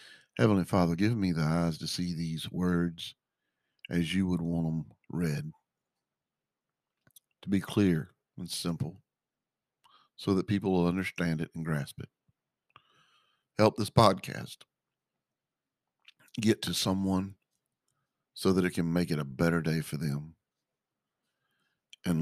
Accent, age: American, 50-69